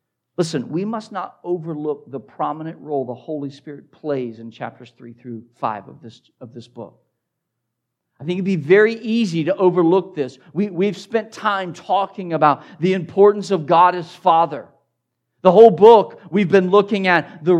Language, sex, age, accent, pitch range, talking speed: English, male, 50-69, American, 135-195 Hz, 165 wpm